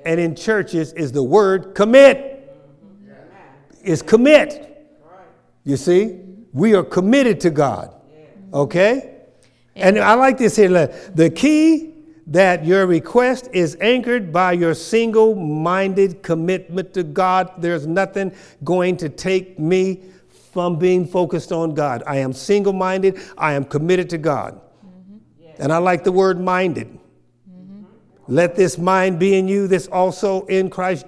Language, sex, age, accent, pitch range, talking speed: English, male, 60-79, American, 155-190 Hz, 140 wpm